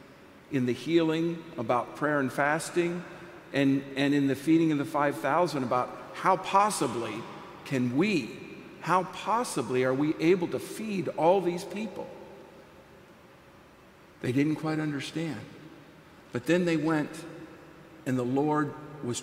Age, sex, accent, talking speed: 50-69, male, American, 130 wpm